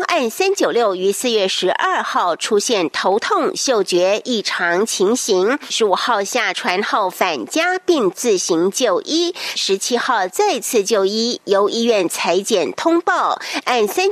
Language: German